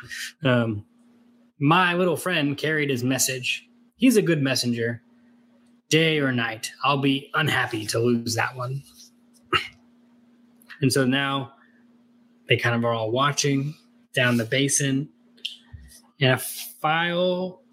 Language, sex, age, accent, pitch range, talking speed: English, male, 20-39, American, 125-190 Hz, 120 wpm